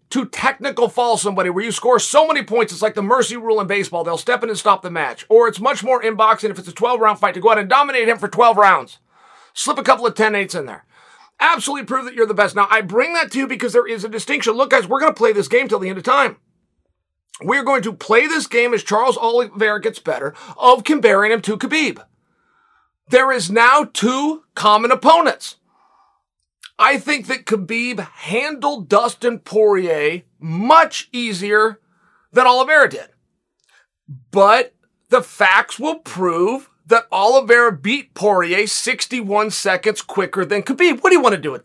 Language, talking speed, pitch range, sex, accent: English, 195 wpm, 205-270 Hz, male, American